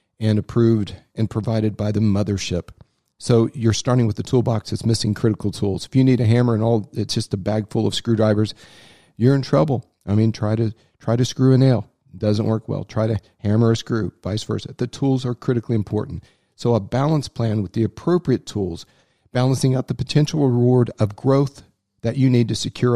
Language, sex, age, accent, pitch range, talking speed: English, male, 40-59, American, 105-125 Hz, 205 wpm